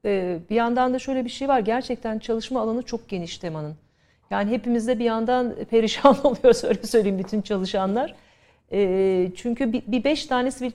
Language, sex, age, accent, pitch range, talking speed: Turkish, female, 40-59, native, 200-245 Hz, 150 wpm